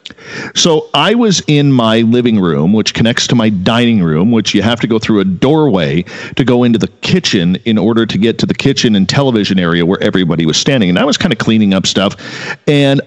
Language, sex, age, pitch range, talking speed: English, male, 40-59, 100-140 Hz, 225 wpm